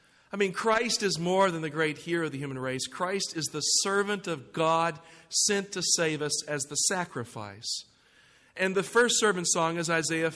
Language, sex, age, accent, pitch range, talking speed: English, male, 50-69, American, 160-190 Hz, 190 wpm